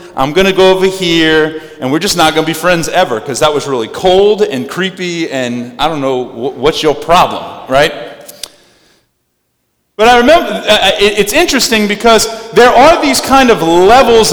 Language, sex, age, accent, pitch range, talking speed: English, male, 30-49, American, 160-215 Hz, 175 wpm